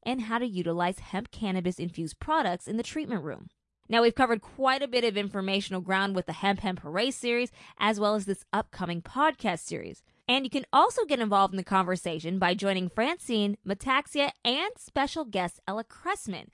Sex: female